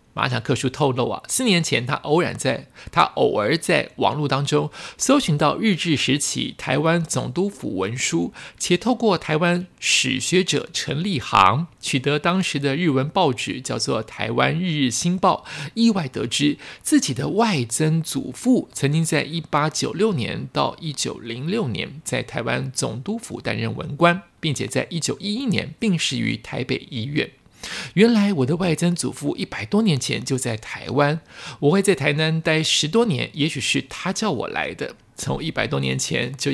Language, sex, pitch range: Chinese, male, 130-175 Hz